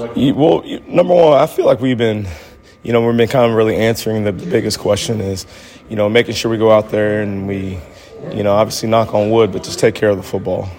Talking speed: 250 wpm